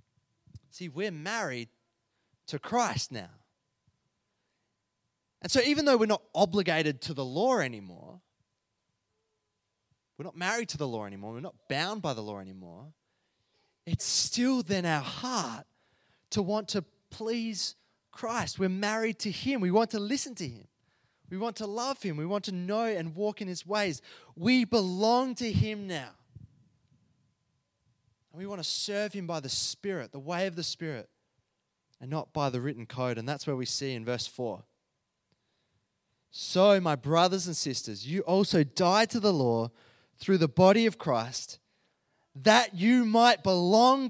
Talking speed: 160 wpm